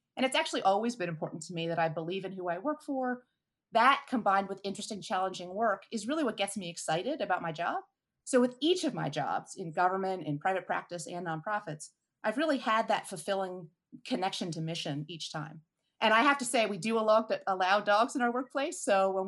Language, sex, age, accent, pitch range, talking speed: English, female, 30-49, American, 175-245 Hz, 210 wpm